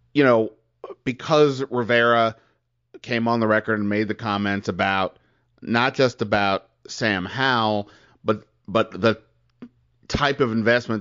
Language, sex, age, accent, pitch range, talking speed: English, male, 30-49, American, 100-120 Hz, 130 wpm